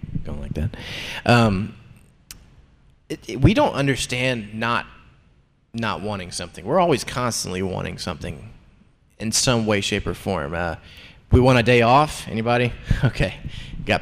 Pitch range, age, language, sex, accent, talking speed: 100-125 Hz, 20-39, English, male, American, 140 wpm